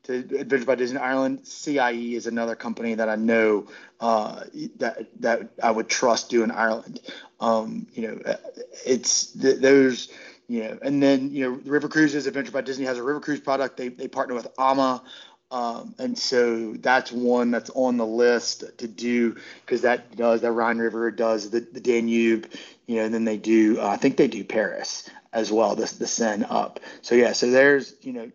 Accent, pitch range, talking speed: American, 115-135 Hz, 195 wpm